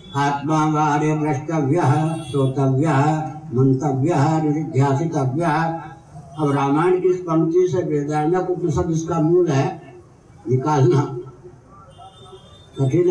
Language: Hindi